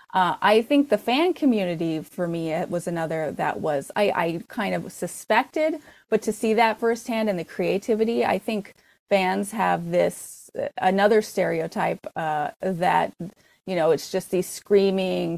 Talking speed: 160 wpm